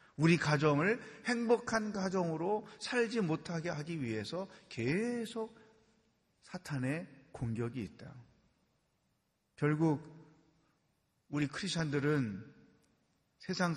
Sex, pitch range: male, 125-180 Hz